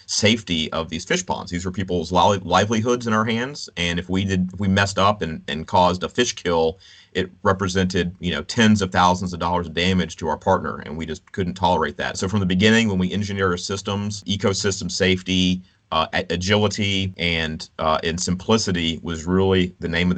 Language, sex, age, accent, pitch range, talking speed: English, male, 30-49, American, 85-100 Hz, 200 wpm